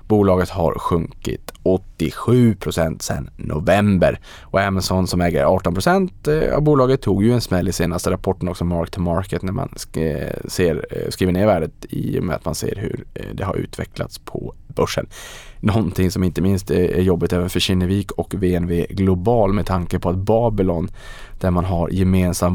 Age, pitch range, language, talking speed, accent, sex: 20-39, 85-100 Hz, Swedish, 170 wpm, Norwegian, male